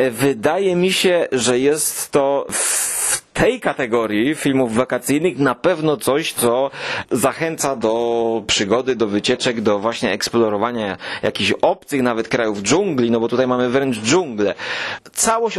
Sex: male